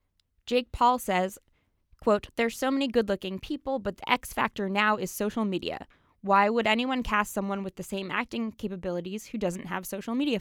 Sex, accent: female, American